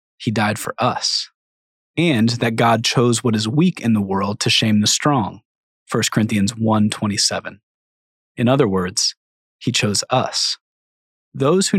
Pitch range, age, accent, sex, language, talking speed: 105-130 Hz, 30-49, American, male, English, 150 wpm